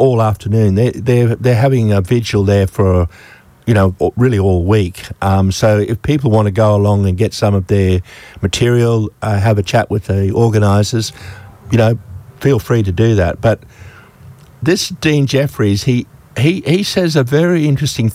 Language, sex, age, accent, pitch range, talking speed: English, male, 50-69, Australian, 100-120 Hz, 180 wpm